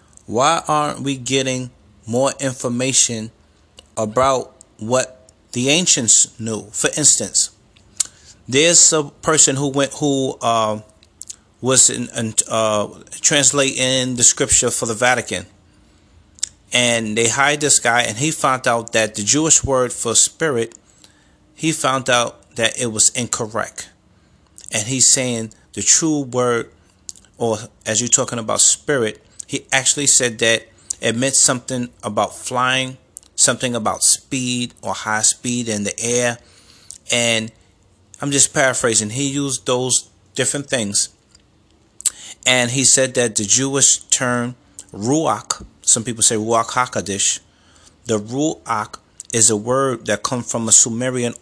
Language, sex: English, male